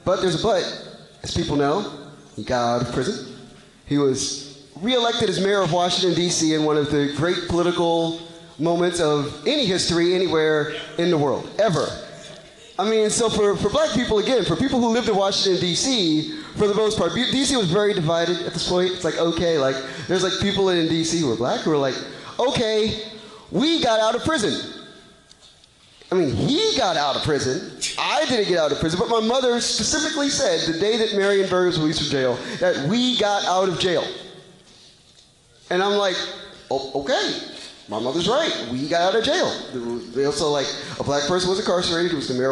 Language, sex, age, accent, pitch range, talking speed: English, male, 30-49, American, 145-195 Hz, 200 wpm